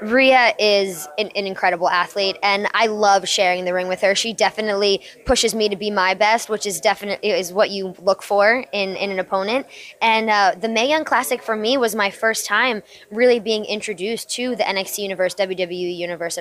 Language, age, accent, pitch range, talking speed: English, 20-39, American, 190-225 Hz, 200 wpm